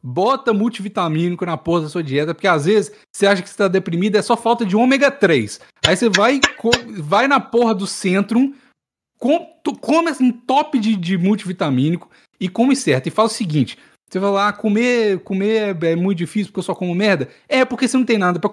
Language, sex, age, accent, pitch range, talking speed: Portuguese, male, 20-39, Brazilian, 170-230 Hz, 205 wpm